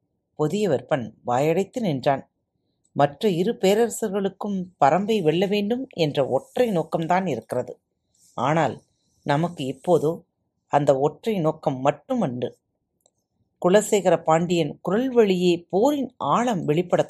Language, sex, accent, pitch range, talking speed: Tamil, female, native, 150-225 Hz, 95 wpm